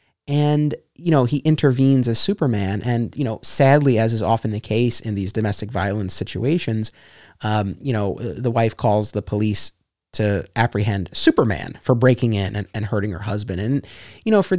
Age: 30-49